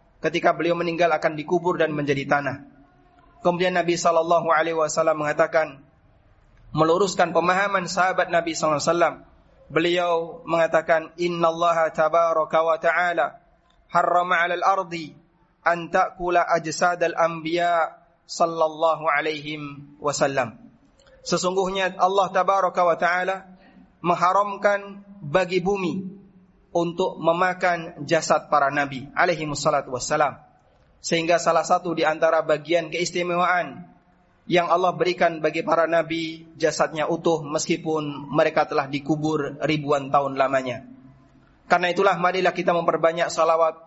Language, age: Indonesian, 30-49